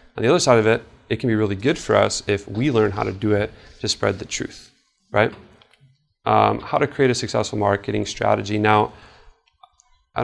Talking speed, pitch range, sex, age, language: 205 wpm, 105-120 Hz, male, 30-49, English